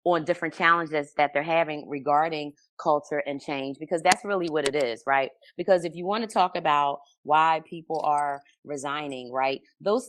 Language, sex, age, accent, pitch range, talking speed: English, female, 20-39, American, 145-180 Hz, 180 wpm